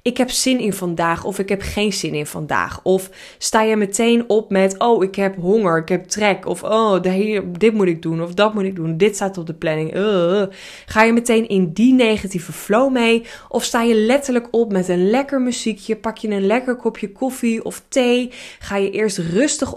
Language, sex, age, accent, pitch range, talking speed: Dutch, female, 20-39, Dutch, 185-235 Hz, 220 wpm